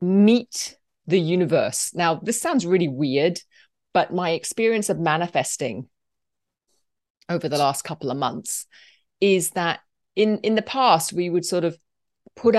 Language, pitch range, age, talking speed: English, 140-180 Hz, 30-49, 145 wpm